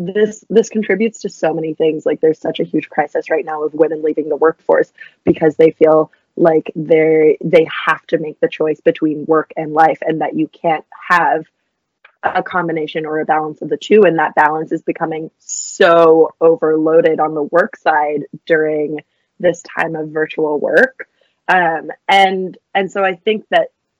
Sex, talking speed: female, 180 wpm